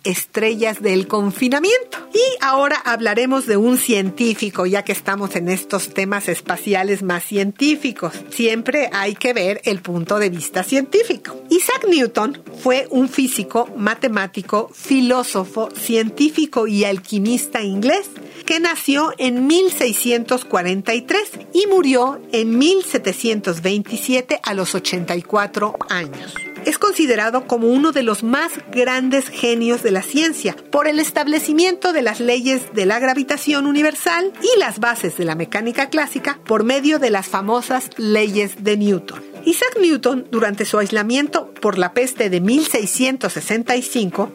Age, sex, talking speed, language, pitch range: 50-69, female, 130 wpm, Spanish, 205-280 Hz